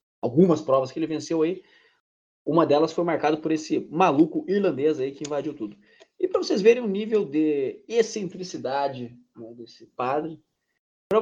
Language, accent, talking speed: Portuguese, Brazilian, 155 wpm